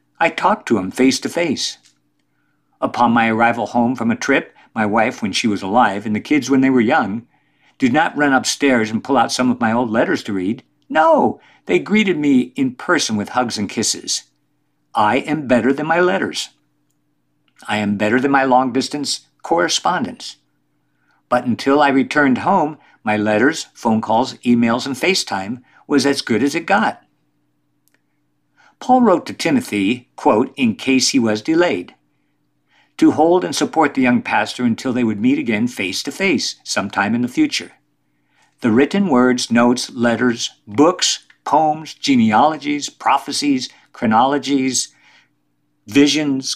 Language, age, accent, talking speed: English, 50-69, American, 155 wpm